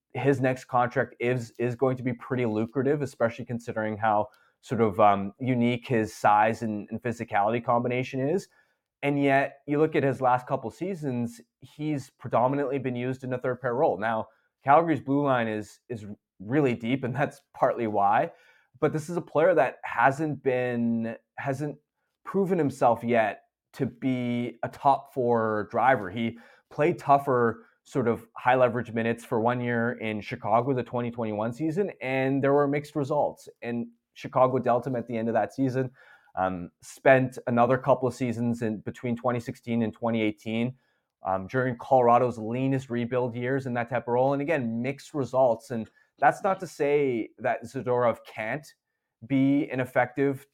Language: English